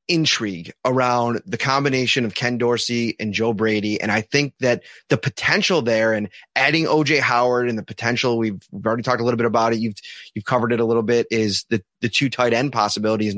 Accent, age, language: American, 20-39, English